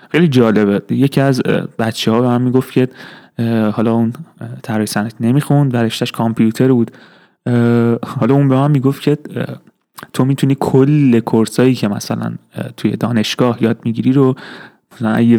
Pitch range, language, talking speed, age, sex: 115-130 Hz, Persian, 145 wpm, 30-49, male